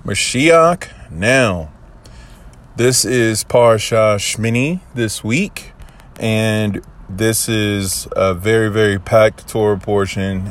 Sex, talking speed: male, 95 wpm